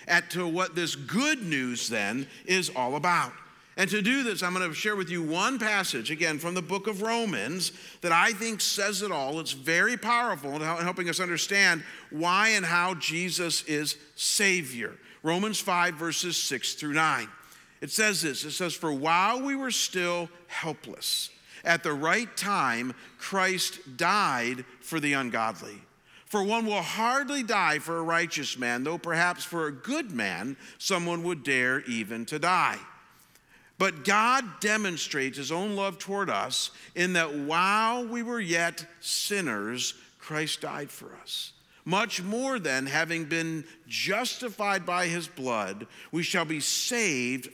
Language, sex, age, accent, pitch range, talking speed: English, male, 50-69, American, 155-205 Hz, 160 wpm